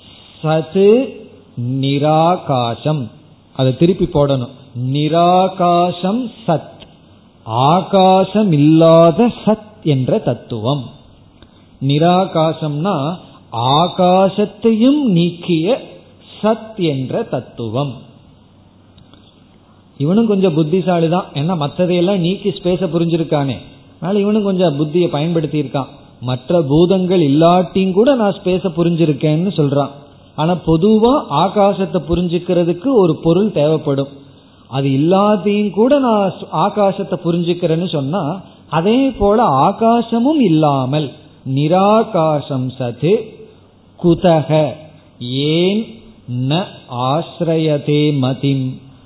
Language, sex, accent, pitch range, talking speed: Tamil, male, native, 135-190 Hz, 65 wpm